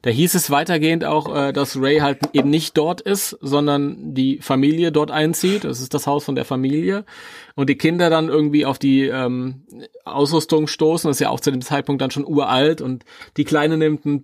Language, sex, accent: German, male, German